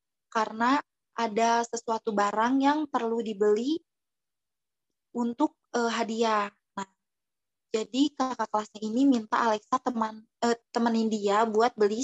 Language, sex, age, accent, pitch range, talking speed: Indonesian, female, 20-39, native, 220-255 Hz, 115 wpm